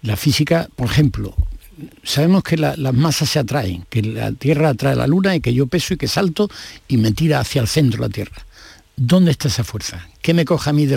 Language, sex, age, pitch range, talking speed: Spanish, male, 60-79, 115-155 Hz, 230 wpm